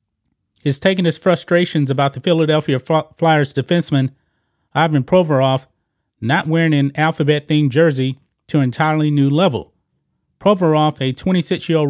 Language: English